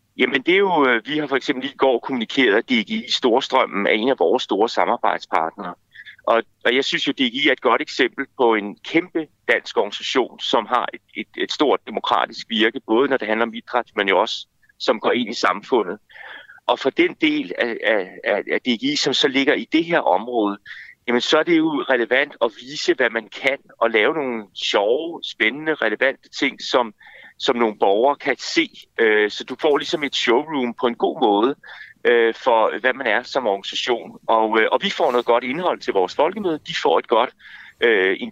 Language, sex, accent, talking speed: Danish, male, native, 200 wpm